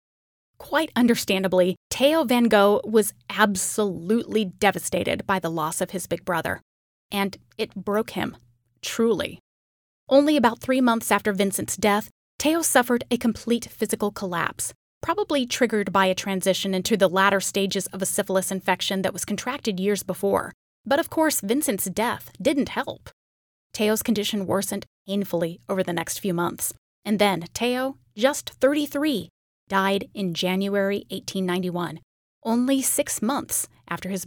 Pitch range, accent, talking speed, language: 190-245 Hz, American, 140 wpm, English